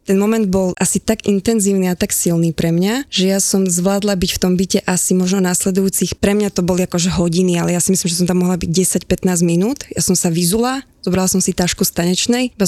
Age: 20-39